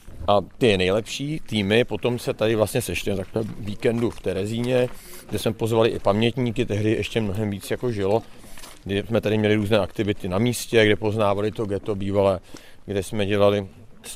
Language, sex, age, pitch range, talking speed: Czech, male, 40-59, 105-120 Hz, 175 wpm